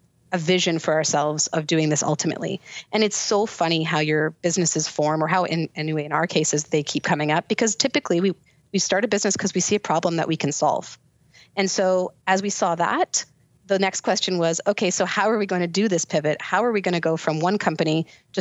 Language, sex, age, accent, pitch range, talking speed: English, female, 30-49, American, 155-190 Hz, 245 wpm